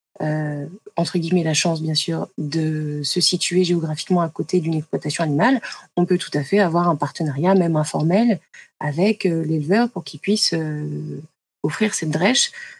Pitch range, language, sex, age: 165-205 Hz, French, female, 20-39